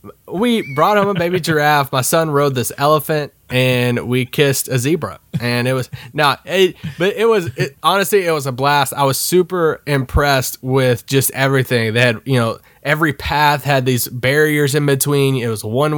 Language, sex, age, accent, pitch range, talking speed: English, male, 20-39, American, 130-165 Hz, 195 wpm